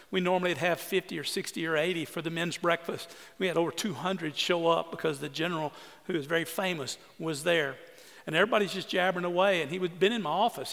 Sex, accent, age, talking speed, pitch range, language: male, American, 50-69, 225 wpm, 165-215 Hz, English